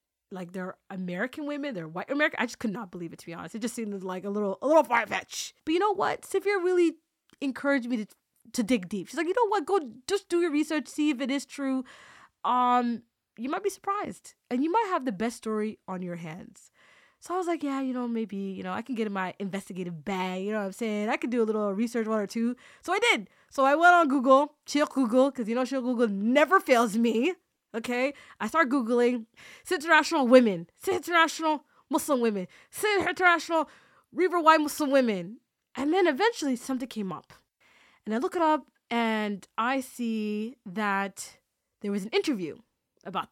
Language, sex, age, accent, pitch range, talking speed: English, female, 20-39, American, 220-310 Hz, 210 wpm